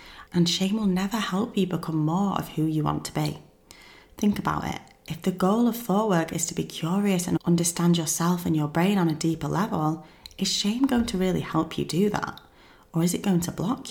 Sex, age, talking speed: female, 30-49, 225 wpm